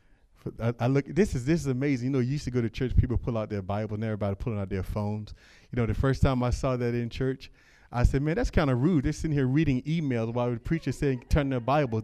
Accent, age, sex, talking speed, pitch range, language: American, 30-49, male, 280 wpm, 105-150 Hz, English